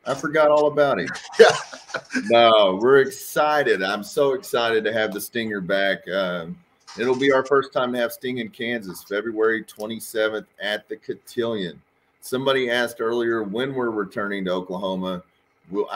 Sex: male